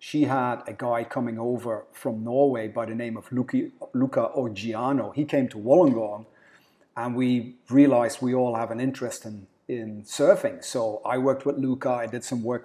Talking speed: 185 wpm